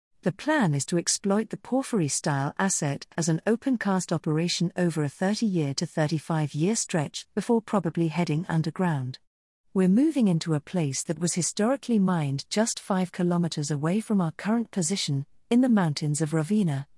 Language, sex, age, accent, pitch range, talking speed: English, female, 40-59, British, 155-210 Hz, 155 wpm